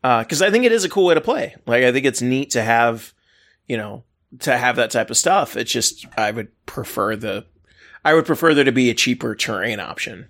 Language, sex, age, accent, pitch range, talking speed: English, male, 20-39, American, 120-145 Hz, 245 wpm